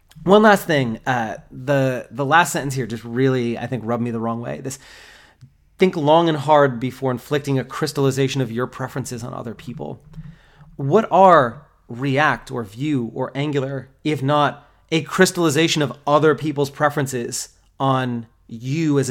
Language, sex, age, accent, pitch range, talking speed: English, male, 30-49, American, 130-160 Hz, 160 wpm